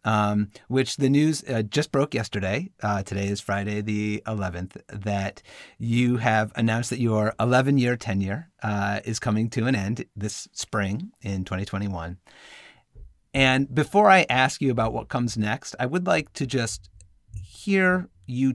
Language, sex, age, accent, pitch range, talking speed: English, male, 30-49, American, 100-125 Hz, 155 wpm